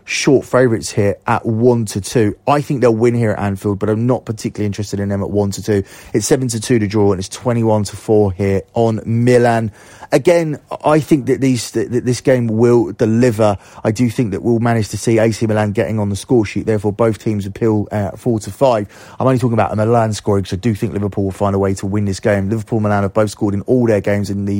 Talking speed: 255 wpm